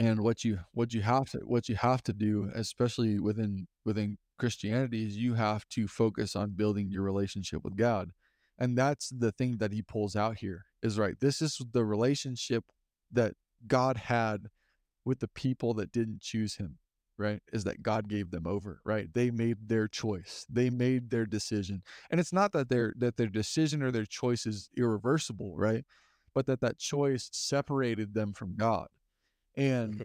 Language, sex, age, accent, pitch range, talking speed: English, male, 20-39, American, 105-125 Hz, 180 wpm